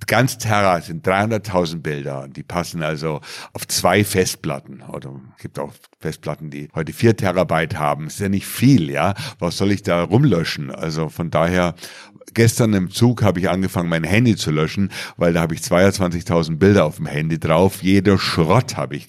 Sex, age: male, 60-79